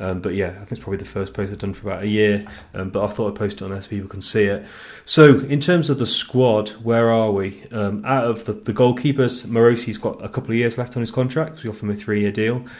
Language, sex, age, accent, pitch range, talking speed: English, male, 30-49, British, 100-120 Hz, 290 wpm